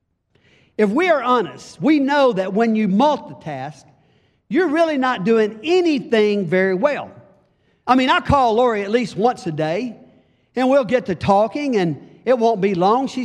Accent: American